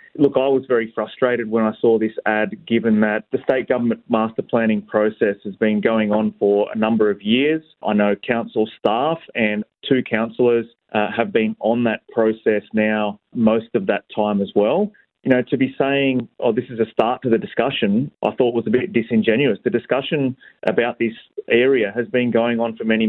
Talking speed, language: 200 wpm, English